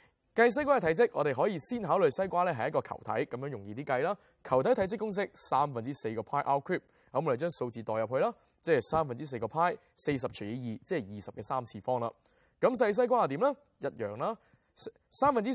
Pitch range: 125-185 Hz